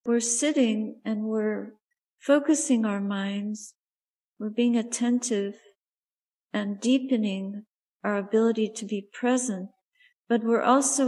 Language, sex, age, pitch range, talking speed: English, female, 50-69, 210-250 Hz, 110 wpm